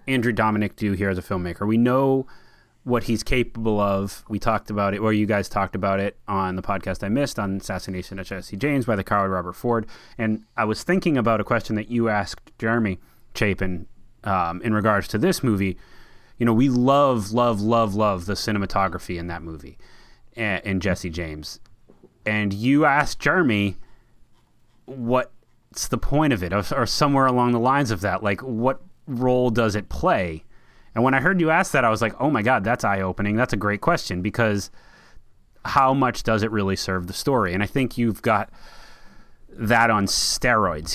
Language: English